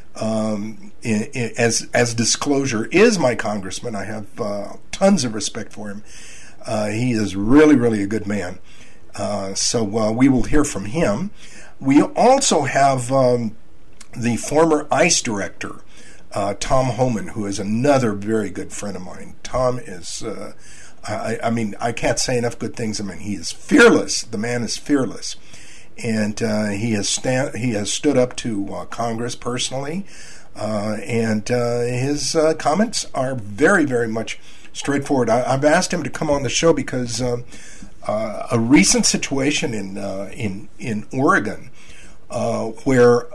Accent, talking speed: American, 160 wpm